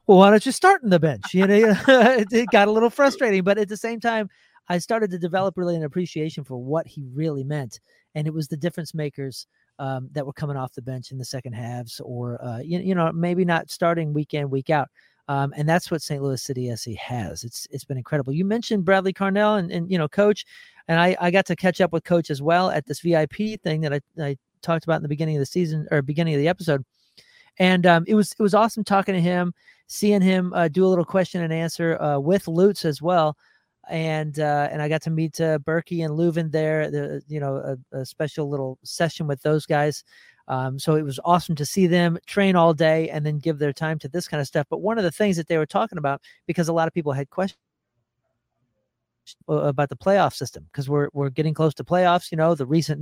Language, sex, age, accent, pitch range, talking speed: English, male, 40-59, American, 140-180 Hz, 240 wpm